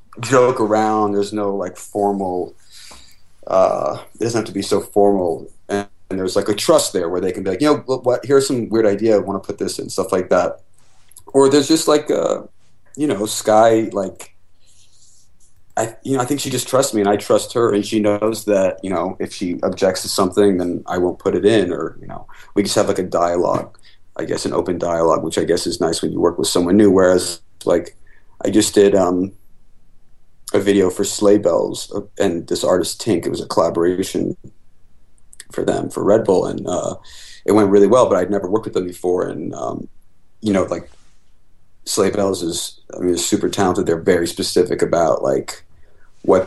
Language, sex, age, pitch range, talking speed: English, male, 30-49, 95-125 Hz, 210 wpm